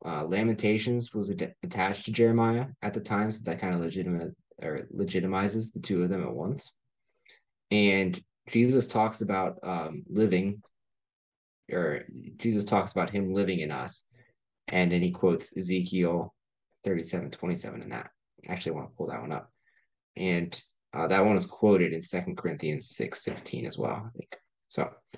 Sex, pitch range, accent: male, 90-105 Hz, American